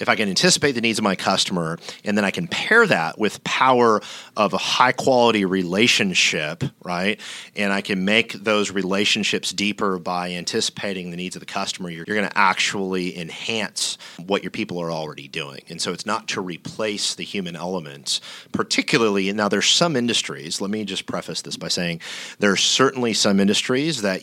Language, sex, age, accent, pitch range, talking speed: English, male, 40-59, American, 85-105 Hz, 180 wpm